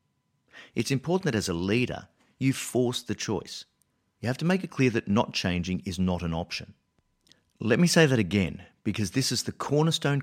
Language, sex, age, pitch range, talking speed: English, male, 50-69, 95-125 Hz, 195 wpm